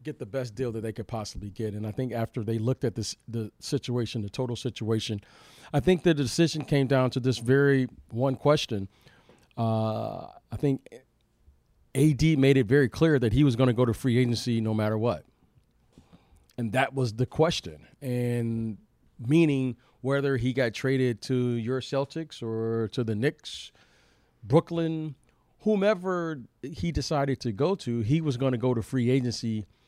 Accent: American